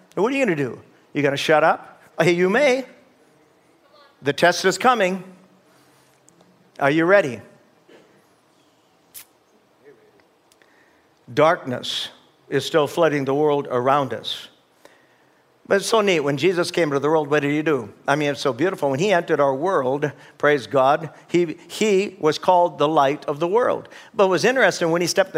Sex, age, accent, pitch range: male, 60-79, American, 155-200 Hz